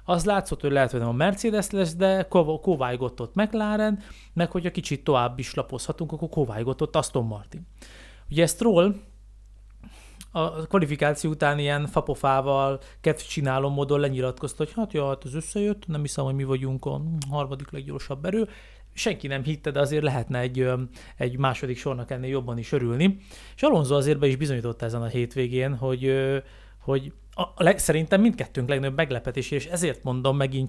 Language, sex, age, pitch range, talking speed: Hungarian, male, 30-49, 130-170 Hz, 160 wpm